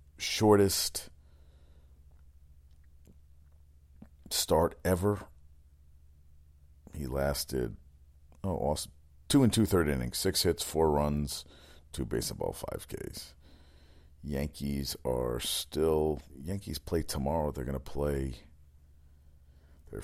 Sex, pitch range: male, 70-80 Hz